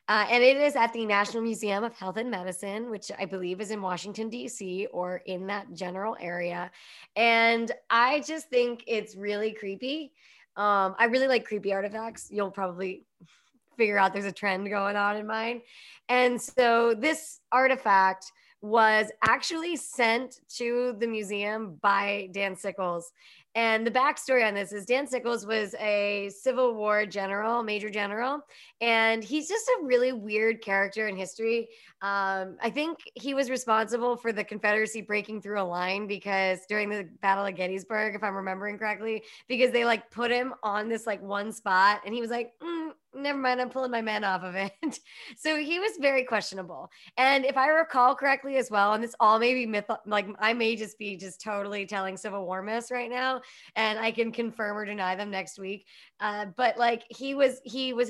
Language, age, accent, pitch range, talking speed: English, 20-39, American, 200-245 Hz, 185 wpm